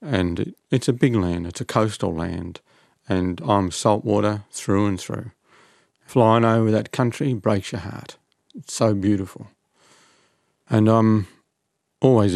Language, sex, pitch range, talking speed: English, male, 95-110 Hz, 135 wpm